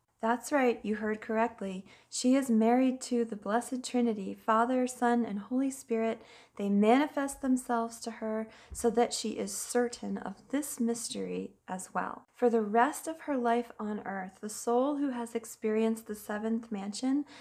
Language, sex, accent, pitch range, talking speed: English, female, American, 215-250 Hz, 165 wpm